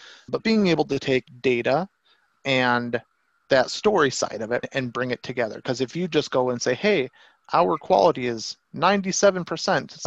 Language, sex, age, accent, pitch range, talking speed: English, male, 30-49, American, 125-155 Hz, 165 wpm